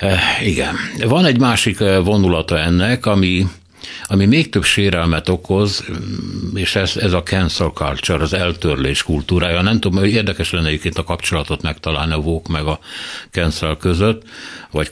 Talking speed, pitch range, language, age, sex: 150 wpm, 80-100 Hz, Hungarian, 60-79, male